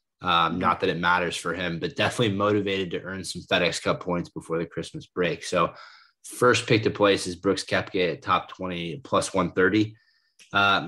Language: English